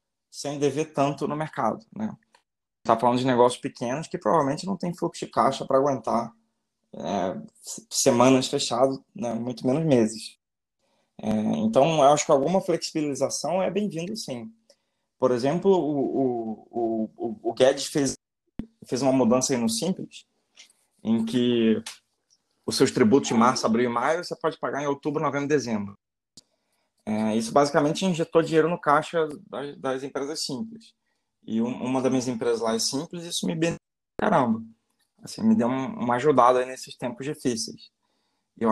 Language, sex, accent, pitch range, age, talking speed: Portuguese, male, Brazilian, 125-175 Hz, 20-39, 165 wpm